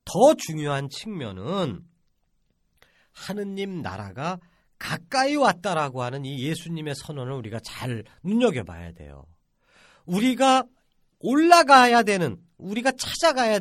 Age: 40-59